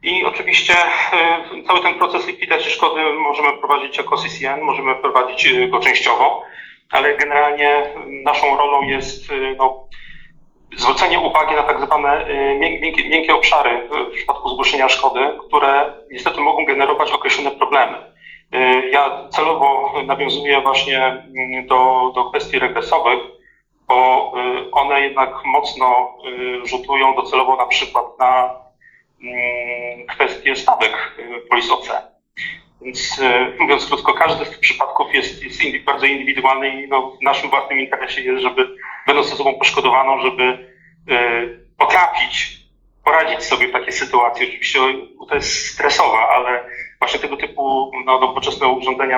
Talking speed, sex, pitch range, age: 120 wpm, male, 130-165 Hz, 40-59